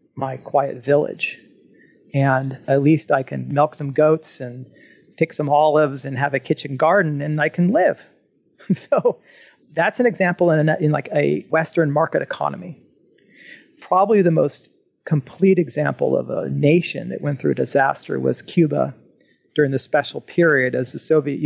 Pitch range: 140-160 Hz